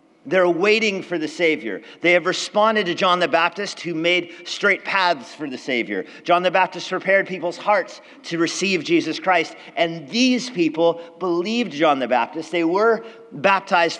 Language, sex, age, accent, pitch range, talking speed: English, male, 40-59, American, 175-275 Hz, 165 wpm